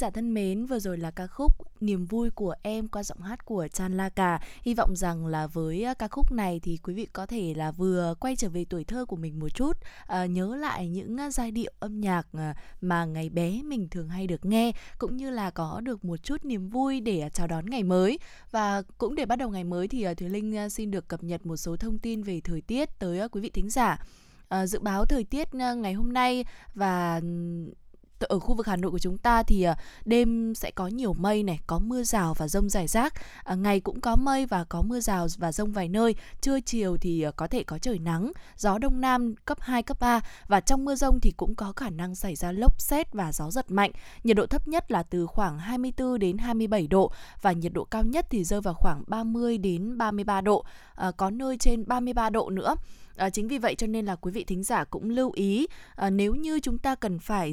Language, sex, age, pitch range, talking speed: Vietnamese, female, 20-39, 180-235 Hz, 230 wpm